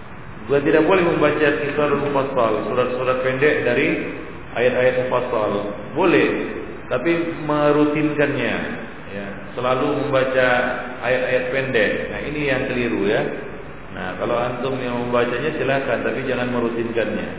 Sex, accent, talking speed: male, native, 110 wpm